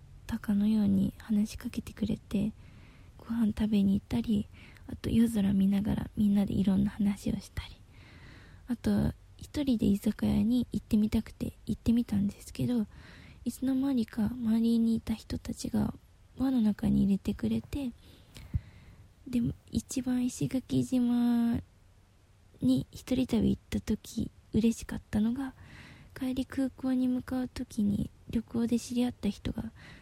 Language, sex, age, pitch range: Japanese, female, 20-39, 200-240 Hz